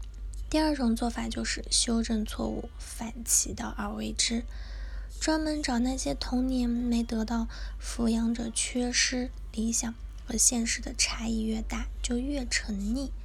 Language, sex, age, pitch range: Chinese, female, 20-39, 230-275 Hz